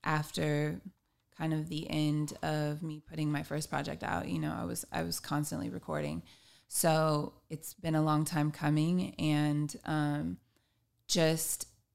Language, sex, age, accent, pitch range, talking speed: English, female, 20-39, American, 145-155 Hz, 150 wpm